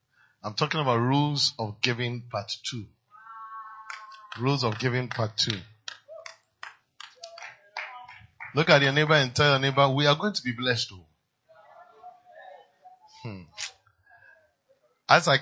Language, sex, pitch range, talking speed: English, male, 130-215 Hz, 115 wpm